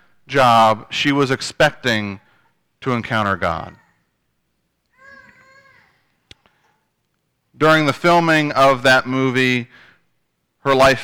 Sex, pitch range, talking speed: male, 115-145 Hz, 80 wpm